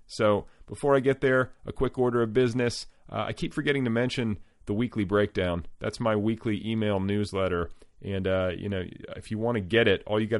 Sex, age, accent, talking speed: male, 30-49, American, 215 wpm